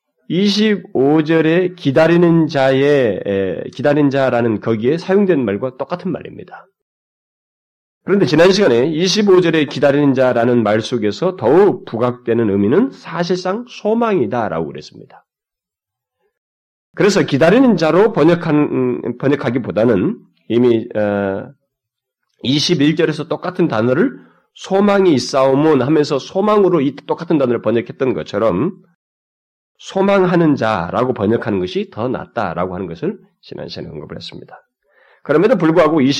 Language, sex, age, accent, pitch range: Korean, male, 30-49, native, 125-190 Hz